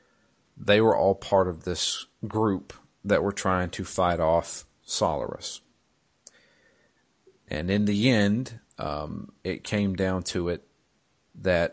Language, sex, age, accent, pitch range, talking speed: English, male, 40-59, American, 90-100 Hz, 130 wpm